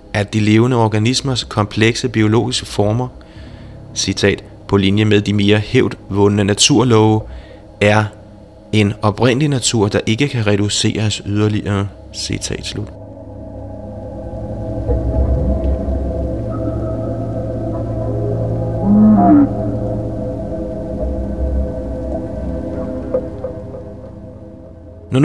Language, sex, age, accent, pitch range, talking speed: Danish, male, 30-49, native, 100-115 Hz, 65 wpm